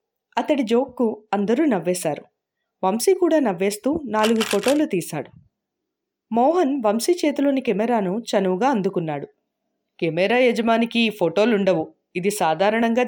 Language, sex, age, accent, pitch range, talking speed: Telugu, female, 30-49, native, 195-270 Hz, 95 wpm